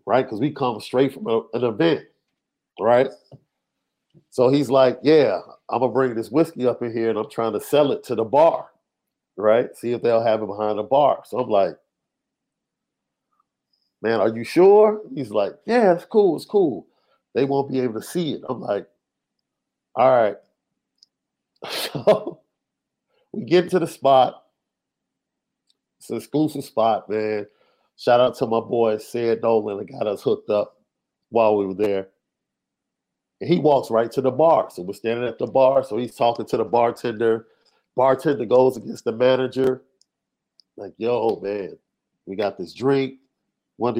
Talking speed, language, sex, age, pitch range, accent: 170 wpm, English, male, 50-69, 115-145 Hz, American